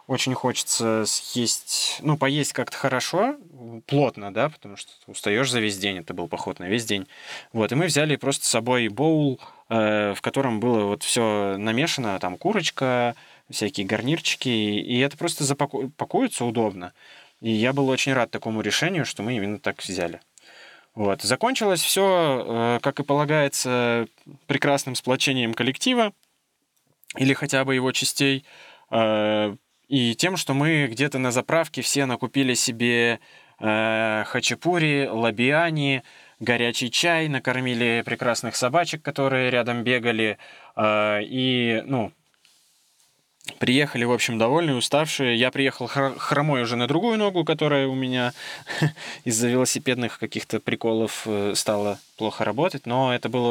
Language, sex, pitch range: Russian, male, 115-140 Hz